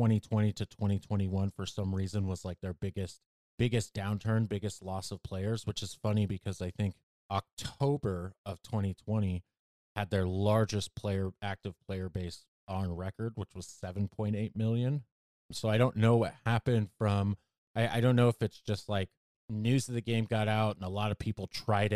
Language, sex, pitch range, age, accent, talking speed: English, male, 95-115 Hz, 30-49, American, 180 wpm